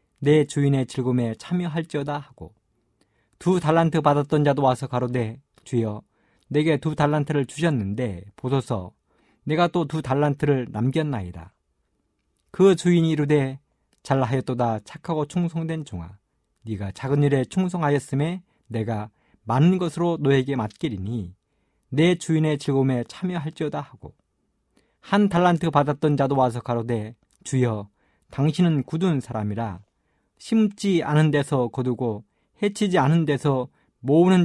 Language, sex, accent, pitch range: Korean, male, native, 115-160 Hz